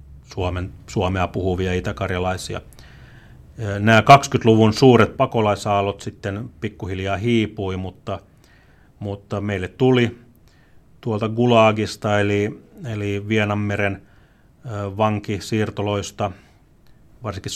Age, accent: 30-49, native